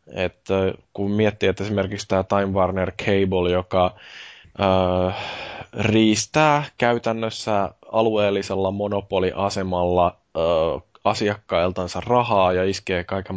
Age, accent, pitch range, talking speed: 20-39, native, 85-95 Hz, 95 wpm